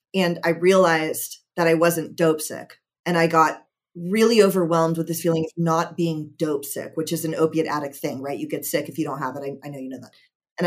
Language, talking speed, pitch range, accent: English, 240 wpm, 160-195 Hz, American